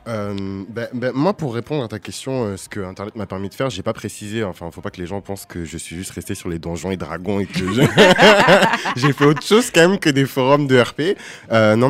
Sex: male